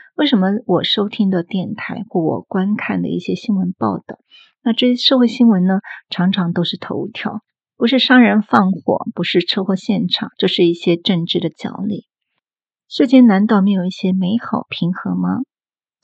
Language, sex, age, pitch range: Chinese, female, 30-49, 180-225 Hz